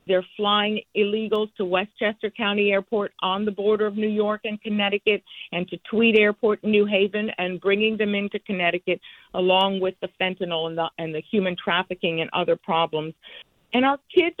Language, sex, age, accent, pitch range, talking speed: English, female, 50-69, American, 185-240 Hz, 180 wpm